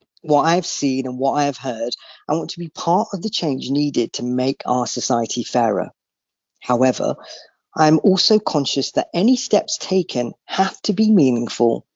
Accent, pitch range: British, 130-175 Hz